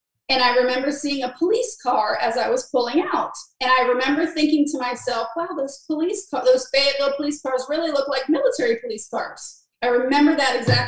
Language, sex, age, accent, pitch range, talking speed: English, female, 30-49, American, 250-300 Hz, 200 wpm